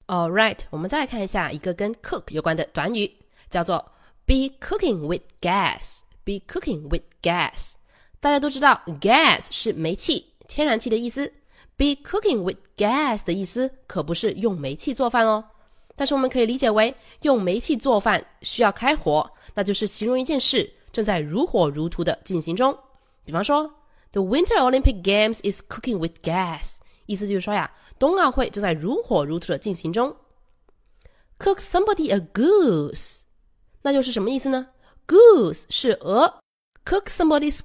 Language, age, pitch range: Chinese, 20-39, 185-280 Hz